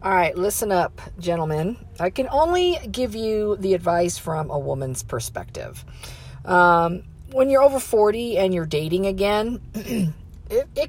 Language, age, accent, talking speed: English, 40-59, American, 150 wpm